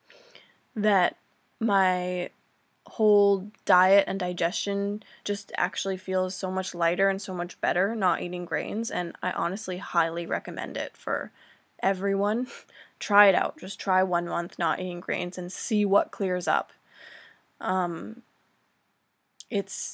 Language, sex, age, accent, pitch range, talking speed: English, female, 20-39, American, 180-200 Hz, 130 wpm